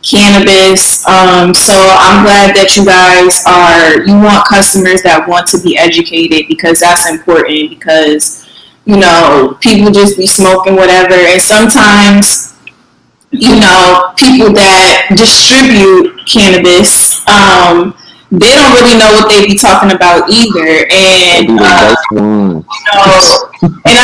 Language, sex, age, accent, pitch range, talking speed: English, female, 20-39, American, 180-205 Hz, 120 wpm